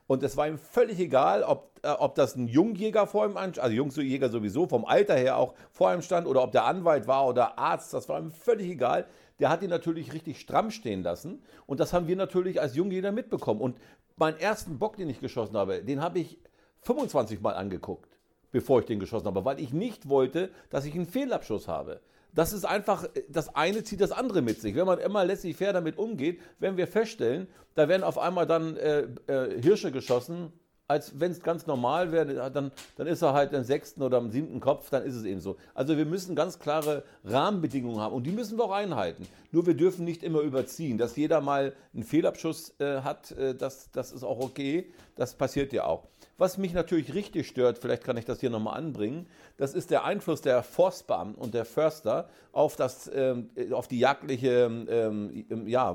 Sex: male